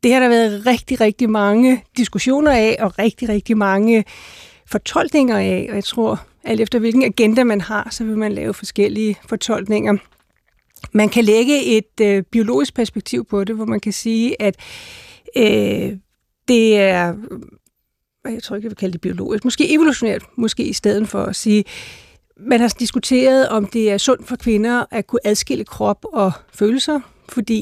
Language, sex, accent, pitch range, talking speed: Danish, female, native, 205-235 Hz, 175 wpm